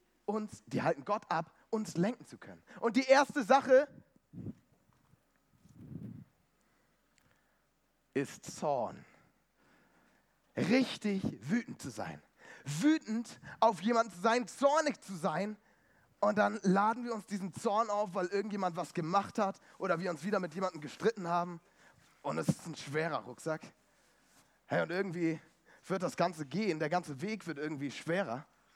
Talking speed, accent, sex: 135 wpm, German, male